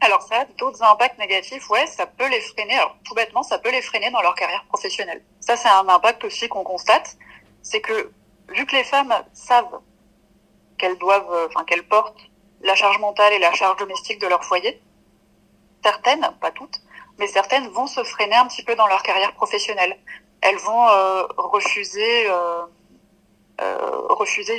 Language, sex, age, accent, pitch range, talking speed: French, female, 30-49, French, 195-245 Hz, 175 wpm